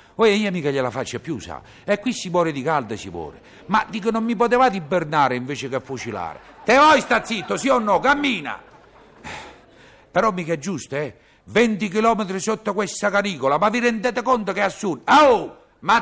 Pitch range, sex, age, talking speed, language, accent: 155-220 Hz, male, 50-69, 190 wpm, Italian, native